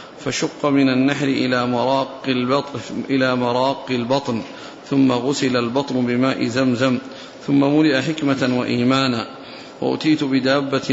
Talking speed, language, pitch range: 95 wpm, Arabic, 125-140 Hz